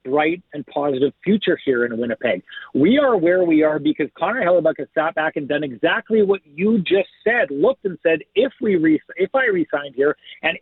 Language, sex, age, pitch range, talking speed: English, male, 50-69, 155-220 Hz, 205 wpm